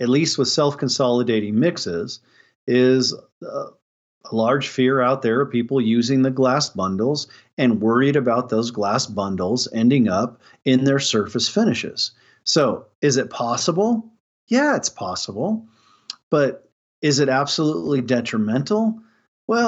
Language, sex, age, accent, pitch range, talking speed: English, male, 40-59, American, 120-160 Hz, 130 wpm